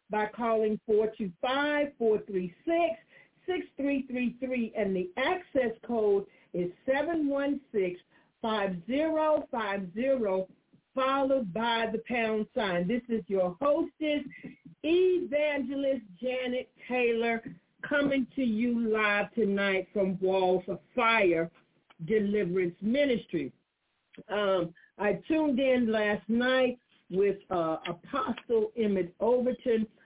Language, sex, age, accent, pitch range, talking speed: English, female, 50-69, American, 195-255 Hz, 100 wpm